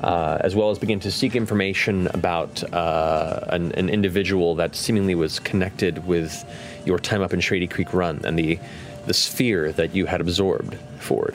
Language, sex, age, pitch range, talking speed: English, male, 30-49, 90-125 Hz, 180 wpm